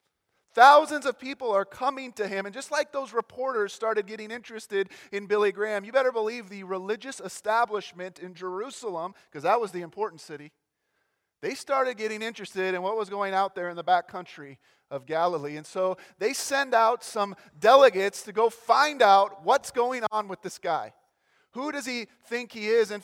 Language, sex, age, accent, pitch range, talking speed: English, male, 30-49, American, 195-245 Hz, 190 wpm